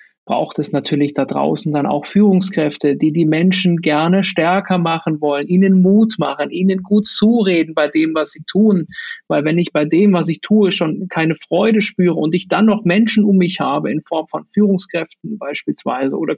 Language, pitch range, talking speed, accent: German, 160-210 Hz, 190 wpm, German